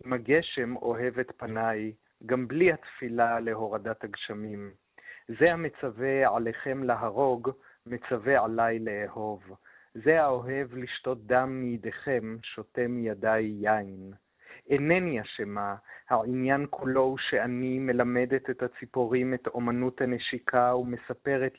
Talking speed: 105 wpm